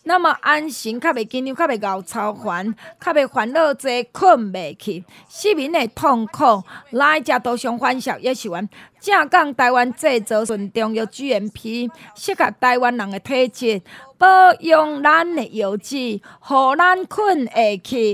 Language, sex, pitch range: Chinese, female, 220-295 Hz